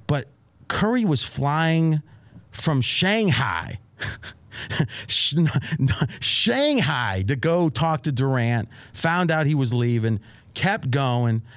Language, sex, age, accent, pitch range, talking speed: English, male, 40-59, American, 115-155 Hz, 95 wpm